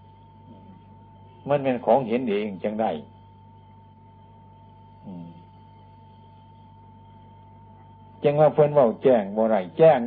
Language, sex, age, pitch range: Thai, male, 60-79, 100-115 Hz